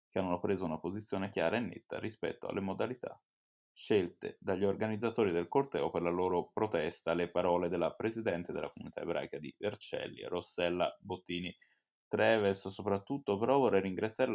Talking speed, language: 145 wpm, Italian